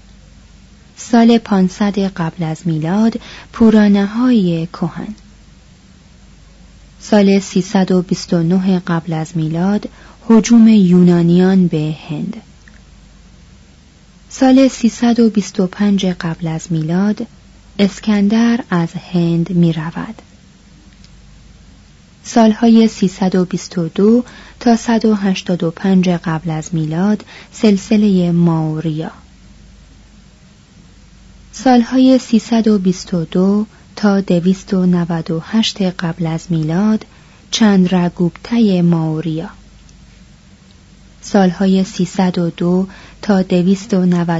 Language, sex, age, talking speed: Persian, female, 30-49, 65 wpm